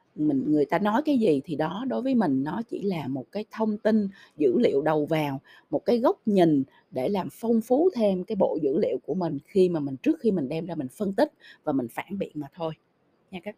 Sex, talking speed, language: female, 245 wpm, Vietnamese